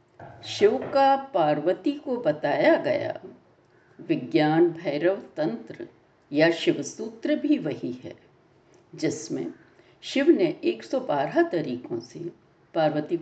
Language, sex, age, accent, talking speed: Hindi, female, 60-79, native, 100 wpm